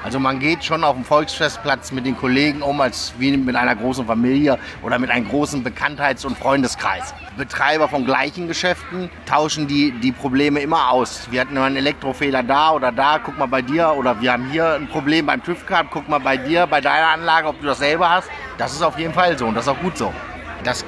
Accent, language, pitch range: German, German, 130-170 Hz